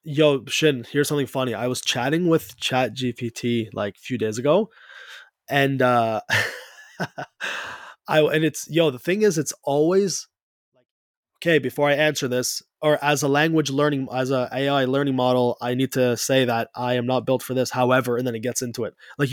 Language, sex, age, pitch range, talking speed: English, male, 20-39, 120-145 Hz, 190 wpm